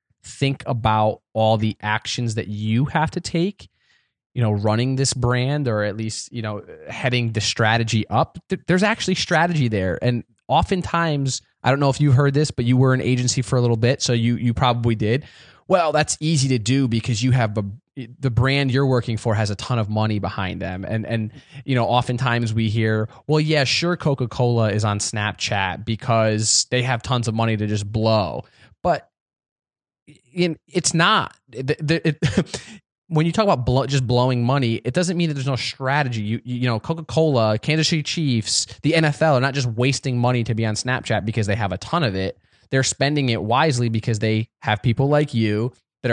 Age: 20-39